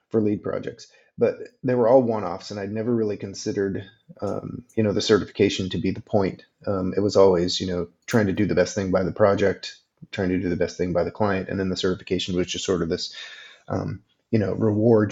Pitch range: 95-110 Hz